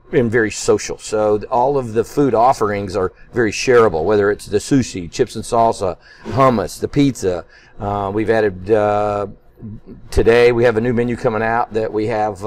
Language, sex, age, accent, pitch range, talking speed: English, male, 50-69, American, 110-130 Hz, 180 wpm